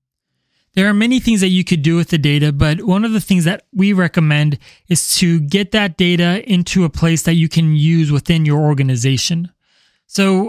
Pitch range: 155-185 Hz